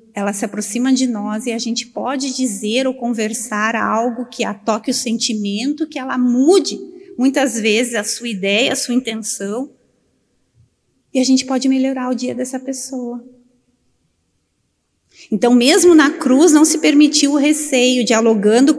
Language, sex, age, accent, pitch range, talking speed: Portuguese, female, 30-49, Brazilian, 215-270 Hz, 155 wpm